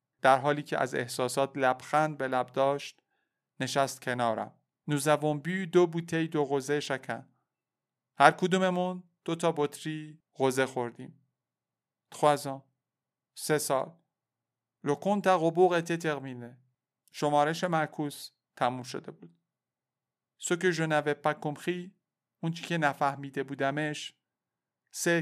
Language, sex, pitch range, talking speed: Persian, male, 130-155 Hz, 100 wpm